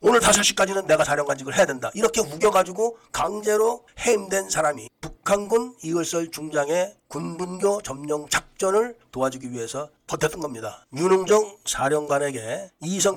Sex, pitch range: male, 155-205 Hz